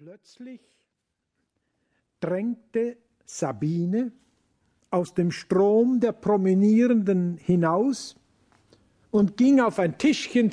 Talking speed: 80 wpm